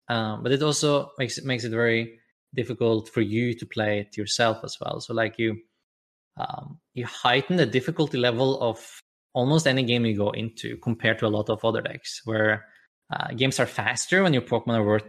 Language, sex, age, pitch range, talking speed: English, male, 20-39, 115-155 Hz, 205 wpm